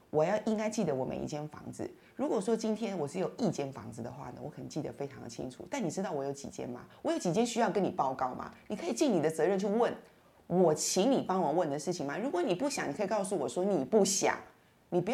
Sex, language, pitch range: female, Chinese, 140-210 Hz